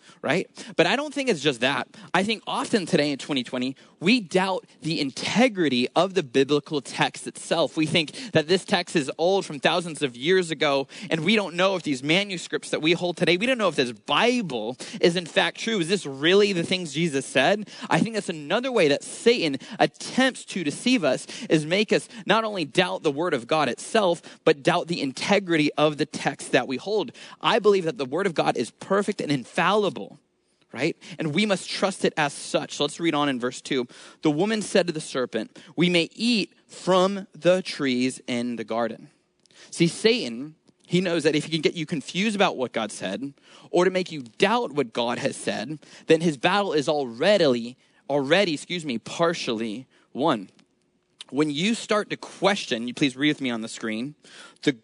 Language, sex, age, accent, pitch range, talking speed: English, male, 20-39, American, 145-195 Hz, 200 wpm